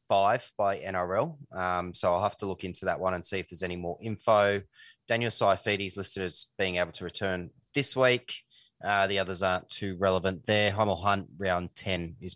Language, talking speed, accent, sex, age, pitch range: English, 205 wpm, Australian, male, 20-39, 95-110 Hz